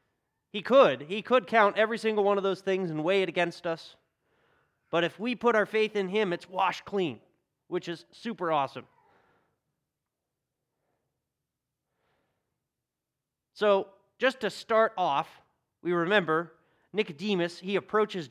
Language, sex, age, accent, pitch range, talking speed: English, male, 30-49, American, 150-200 Hz, 135 wpm